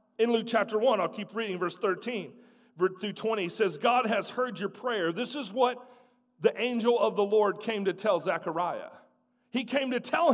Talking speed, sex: 190 wpm, male